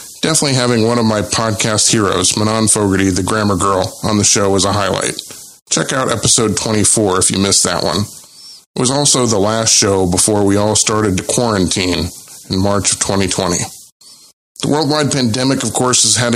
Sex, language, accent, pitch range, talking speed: male, English, American, 100-120 Hz, 185 wpm